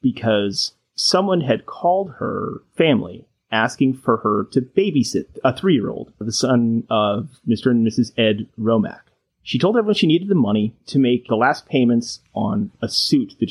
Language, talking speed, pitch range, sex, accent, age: English, 165 wpm, 110-135 Hz, male, American, 30-49